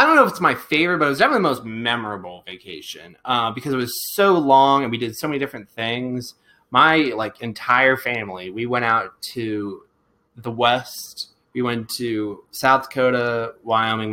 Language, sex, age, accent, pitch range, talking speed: English, male, 20-39, American, 105-130 Hz, 185 wpm